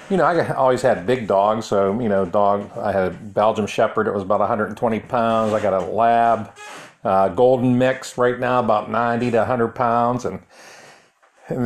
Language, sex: English, male